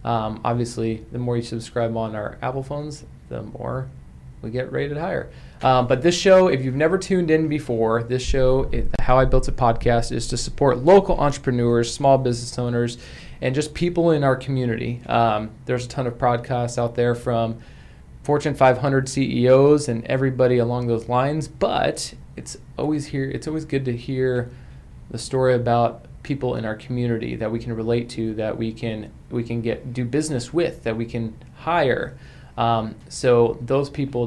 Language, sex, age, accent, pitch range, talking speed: English, male, 20-39, American, 115-135 Hz, 175 wpm